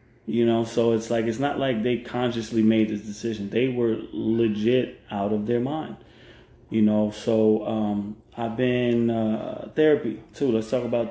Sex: male